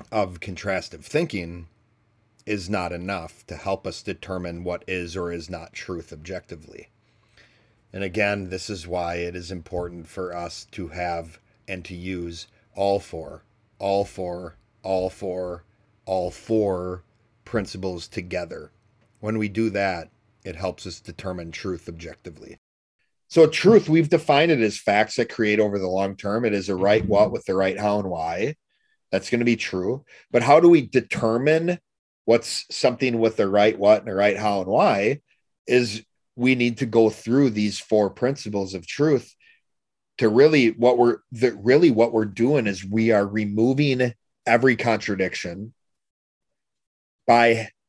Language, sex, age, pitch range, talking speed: English, male, 40-59, 95-115 Hz, 155 wpm